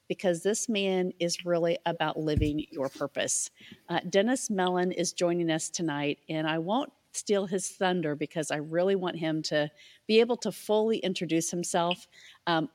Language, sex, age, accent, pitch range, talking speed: English, female, 50-69, American, 160-200 Hz, 165 wpm